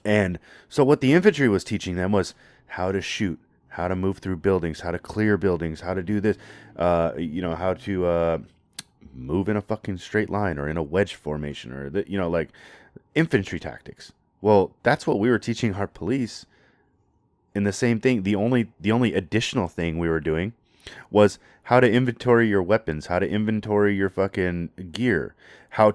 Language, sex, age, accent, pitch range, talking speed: English, male, 30-49, American, 80-110 Hz, 190 wpm